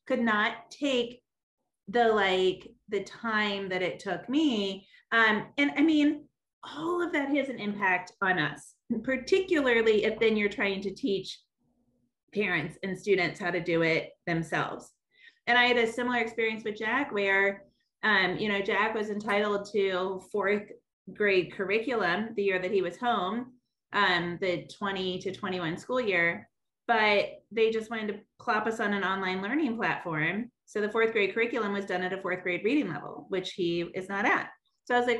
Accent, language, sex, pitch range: American, English, female, 195-245 Hz